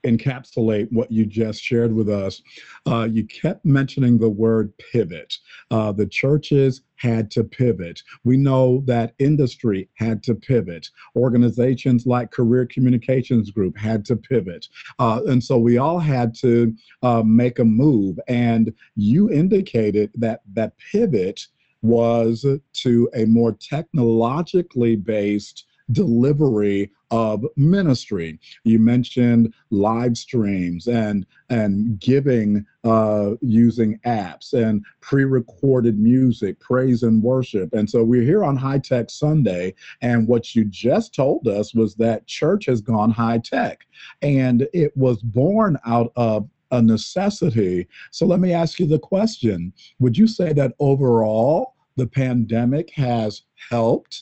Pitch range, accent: 110-130 Hz, American